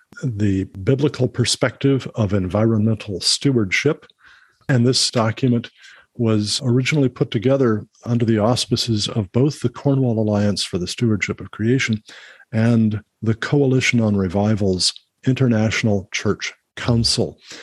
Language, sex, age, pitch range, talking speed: English, male, 50-69, 100-130 Hz, 115 wpm